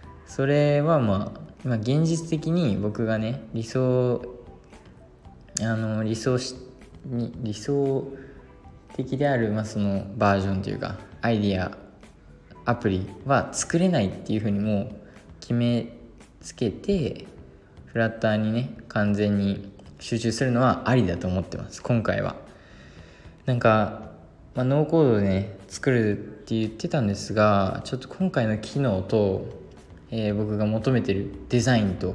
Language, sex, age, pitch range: Japanese, male, 20-39, 100-125 Hz